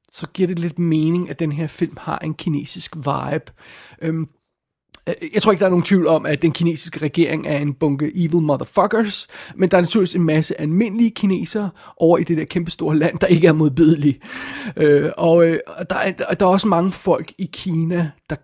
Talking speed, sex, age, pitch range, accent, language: 185 wpm, male, 30-49, 155-190 Hz, native, Danish